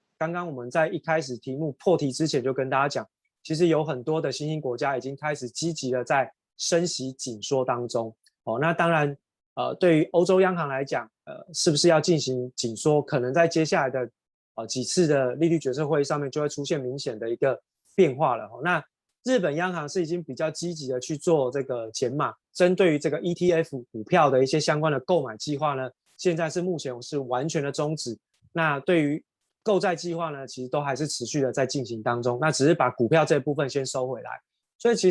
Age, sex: 20-39, male